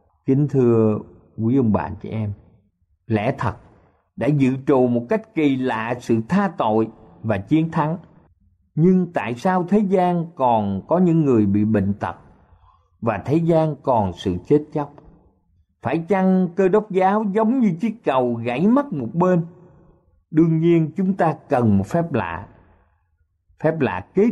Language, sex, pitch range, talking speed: Vietnamese, male, 105-175 Hz, 160 wpm